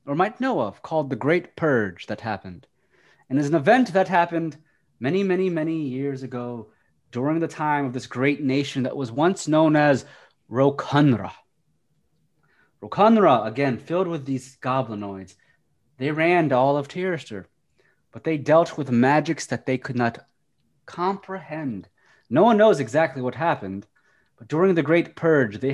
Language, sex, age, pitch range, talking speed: English, male, 30-49, 125-165 Hz, 155 wpm